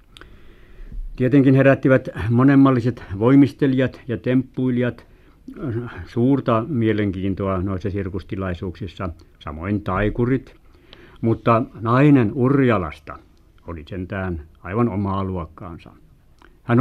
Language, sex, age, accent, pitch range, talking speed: Finnish, male, 60-79, native, 95-125 Hz, 75 wpm